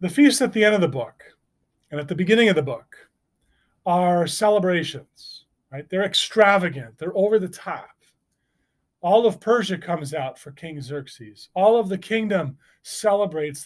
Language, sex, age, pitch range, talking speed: English, male, 30-49, 150-210 Hz, 165 wpm